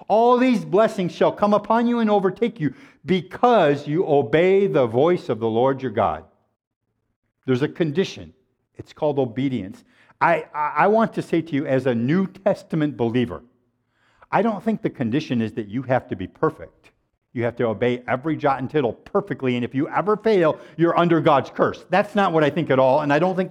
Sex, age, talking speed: male, 50-69, 200 wpm